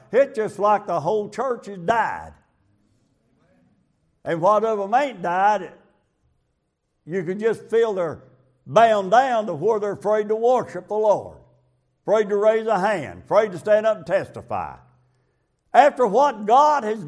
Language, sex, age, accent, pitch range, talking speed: English, male, 60-79, American, 155-225 Hz, 155 wpm